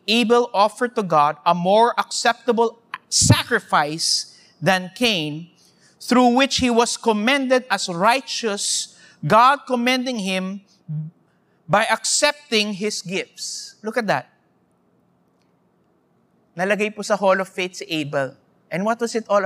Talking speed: 120 wpm